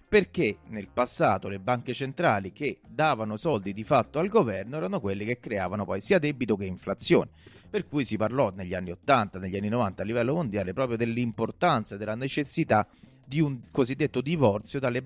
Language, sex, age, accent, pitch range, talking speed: Italian, male, 30-49, native, 105-150 Hz, 180 wpm